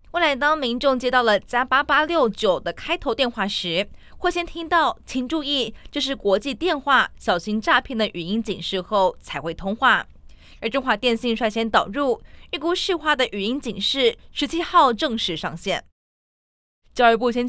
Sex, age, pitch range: female, 20-39, 210-280 Hz